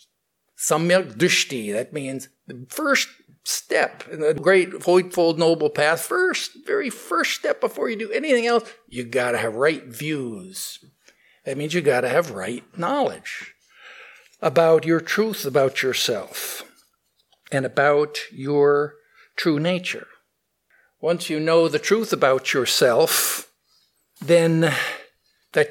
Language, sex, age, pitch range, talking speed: English, male, 60-79, 145-195 Hz, 130 wpm